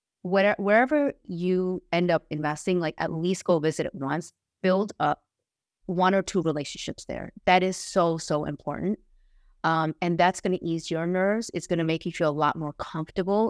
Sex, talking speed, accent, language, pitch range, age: female, 190 wpm, American, English, 155-185 Hz, 30-49